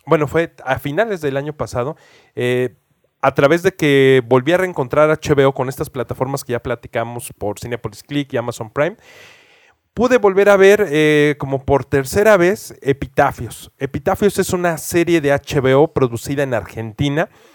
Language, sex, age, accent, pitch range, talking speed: Spanish, male, 30-49, Mexican, 130-160 Hz, 160 wpm